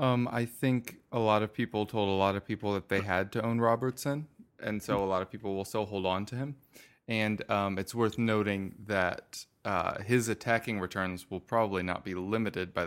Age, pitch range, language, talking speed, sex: 20-39, 95-115 Hz, English, 215 wpm, male